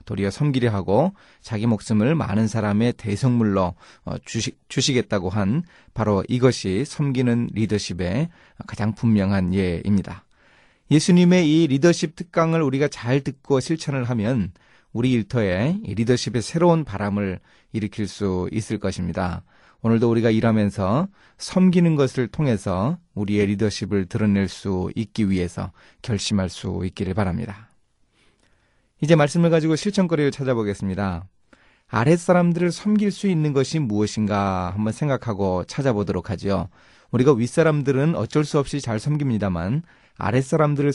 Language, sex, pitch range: Korean, male, 100-145 Hz